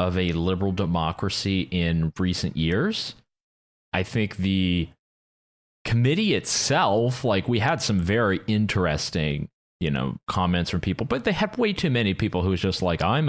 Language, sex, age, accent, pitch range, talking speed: English, male, 30-49, American, 90-120 Hz, 160 wpm